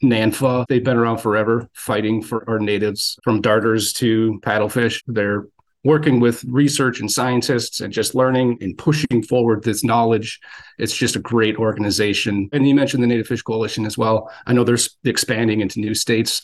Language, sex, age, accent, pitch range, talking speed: English, male, 40-59, American, 110-130 Hz, 175 wpm